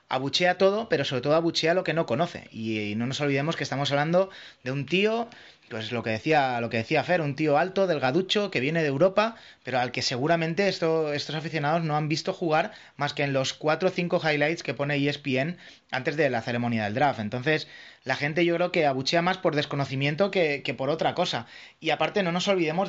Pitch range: 130-170 Hz